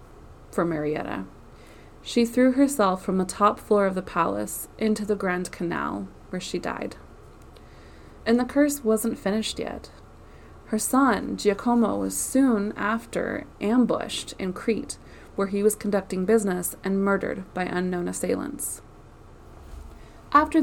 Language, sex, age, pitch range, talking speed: English, female, 20-39, 180-235 Hz, 130 wpm